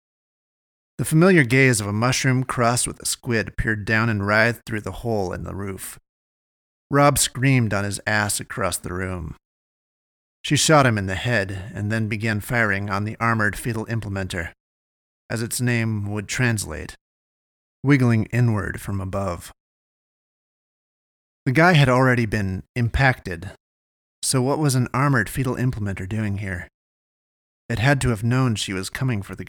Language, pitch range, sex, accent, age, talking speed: English, 95-130 Hz, male, American, 30-49, 155 wpm